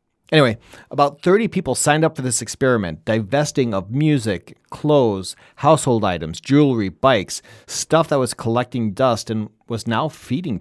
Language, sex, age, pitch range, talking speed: English, male, 40-59, 105-140 Hz, 145 wpm